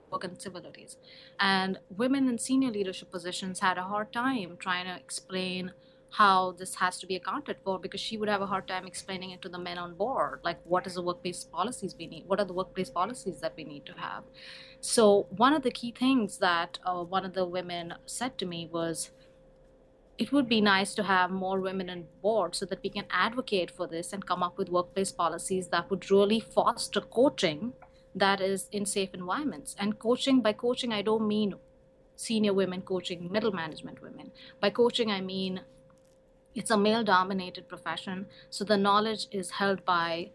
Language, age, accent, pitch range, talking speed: English, 30-49, Indian, 180-210 Hz, 195 wpm